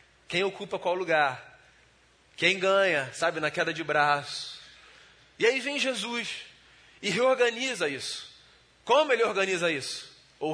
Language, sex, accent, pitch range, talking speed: Portuguese, male, Brazilian, 185-235 Hz, 130 wpm